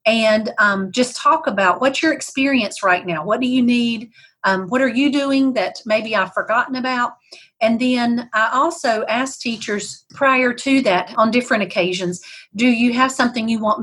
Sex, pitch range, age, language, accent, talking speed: female, 205-255 Hz, 40-59, English, American, 180 wpm